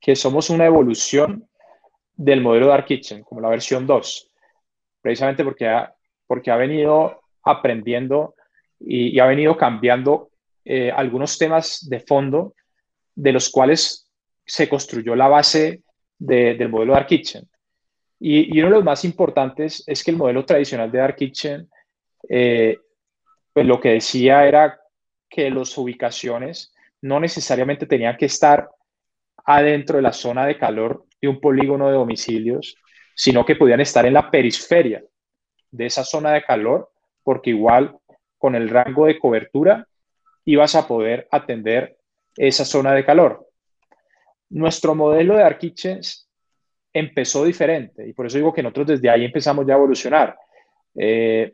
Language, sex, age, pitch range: Spanish, male, 20-39, 125-155 Hz